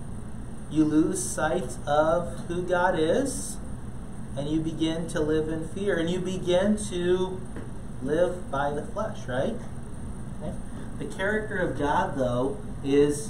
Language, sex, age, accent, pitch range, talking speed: English, male, 30-49, American, 135-185 Hz, 130 wpm